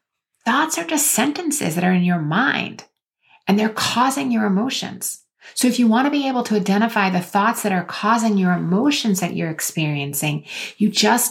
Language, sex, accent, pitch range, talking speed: English, female, American, 180-245 Hz, 185 wpm